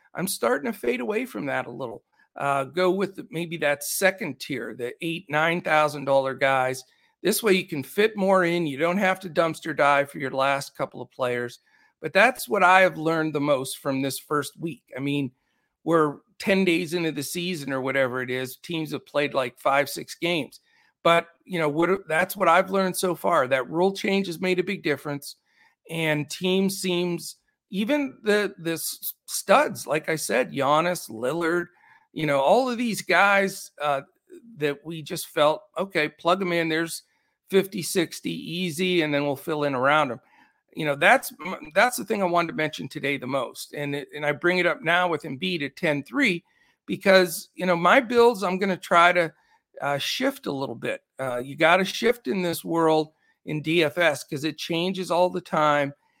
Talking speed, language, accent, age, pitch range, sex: 195 wpm, English, American, 50-69, 145-185 Hz, male